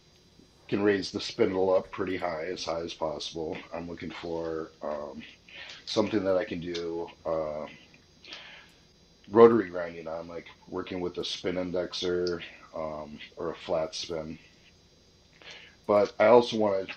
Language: English